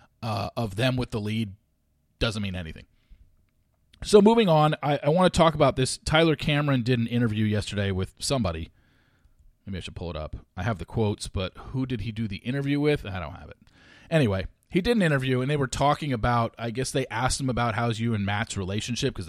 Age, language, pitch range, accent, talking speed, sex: 40-59, English, 110-145 Hz, American, 220 wpm, male